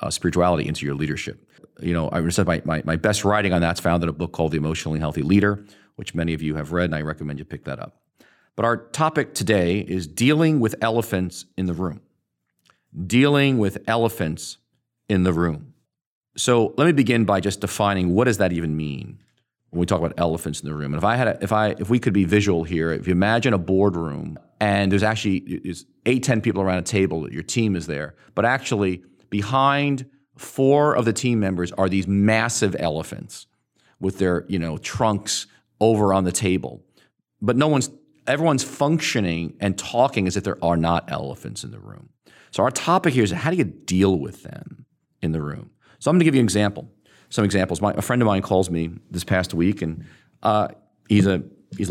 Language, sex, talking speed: English, male, 210 wpm